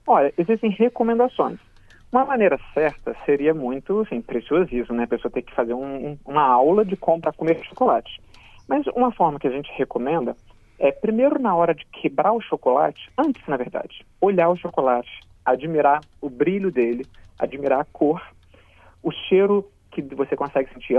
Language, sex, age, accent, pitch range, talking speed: Portuguese, male, 40-59, Brazilian, 130-200 Hz, 170 wpm